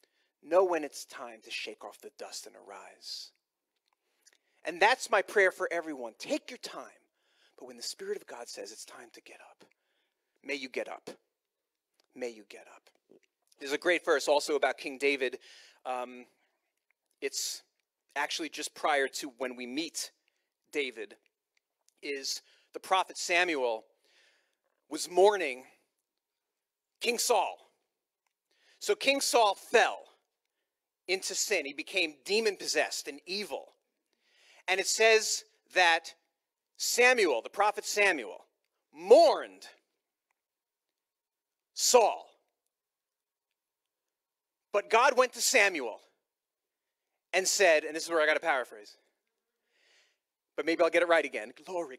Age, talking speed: 40-59, 130 wpm